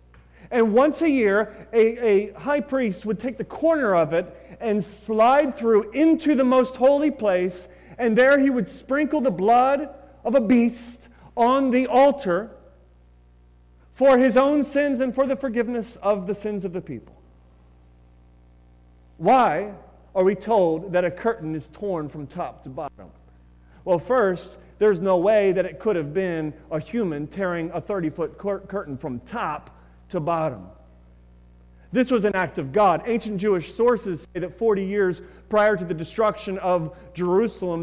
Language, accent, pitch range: English, American, 140-235 Hz